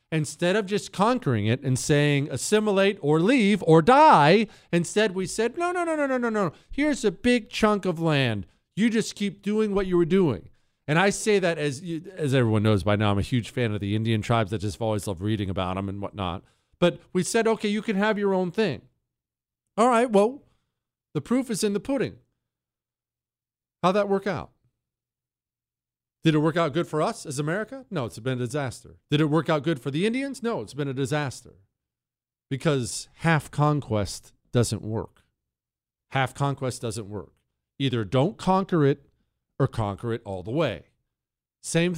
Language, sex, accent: English, male, American